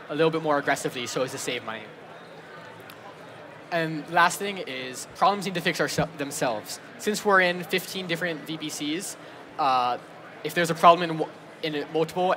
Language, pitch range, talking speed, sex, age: English, 150-175 Hz, 170 wpm, male, 20-39